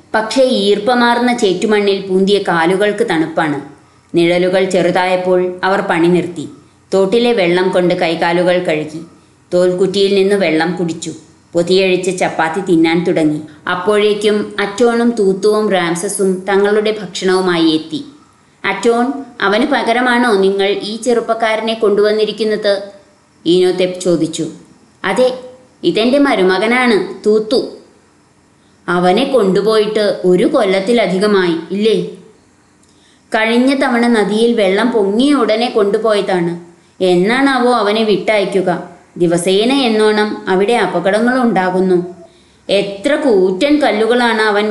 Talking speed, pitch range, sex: 90 wpm, 185-240 Hz, female